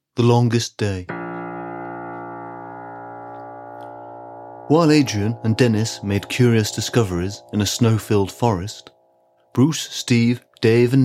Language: English